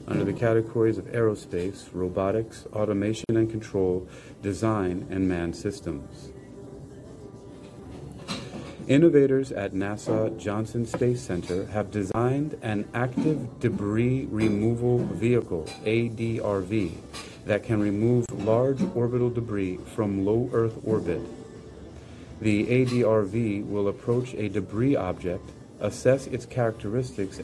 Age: 40-59